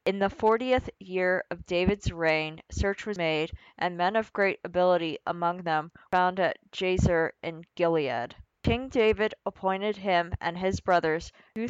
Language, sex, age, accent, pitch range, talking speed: English, female, 20-39, American, 175-200 Hz, 160 wpm